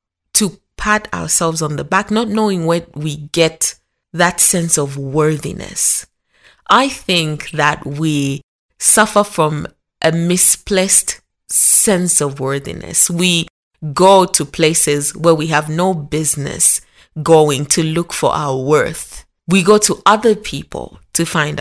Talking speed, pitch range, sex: 135 wpm, 150-185 Hz, female